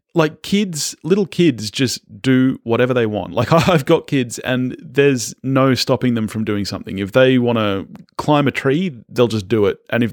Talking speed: 205 wpm